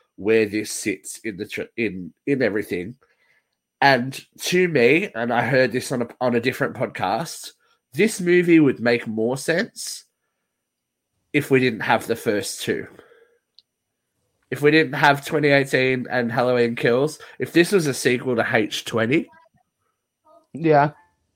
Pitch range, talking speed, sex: 120-155 Hz, 145 wpm, male